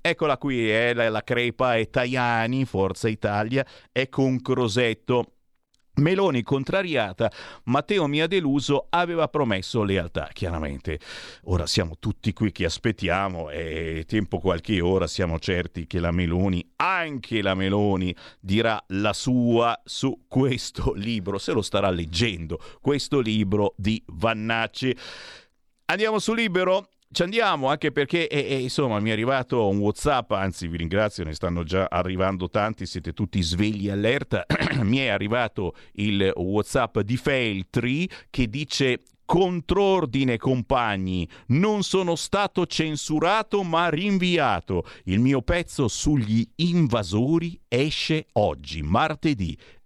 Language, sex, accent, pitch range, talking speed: Italian, male, native, 95-145 Hz, 130 wpm